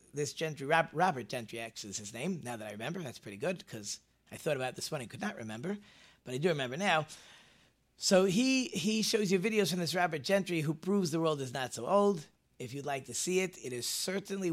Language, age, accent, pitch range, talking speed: English, 40-59, American, 120-175 Hz, 240 wpm